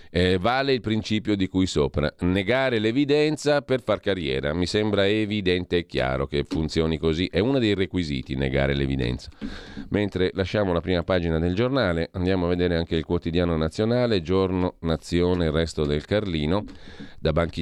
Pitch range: 80-100 Hz